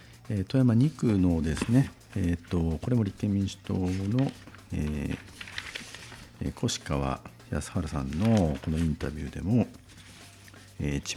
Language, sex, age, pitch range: Japanese, male, 50-69, 80-105 Hz